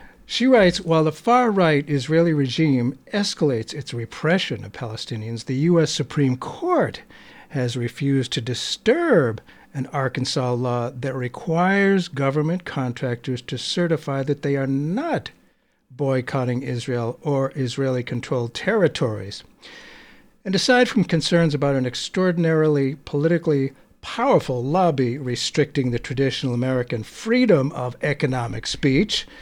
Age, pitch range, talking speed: 60-79, 125-165 Hz, 115 wpm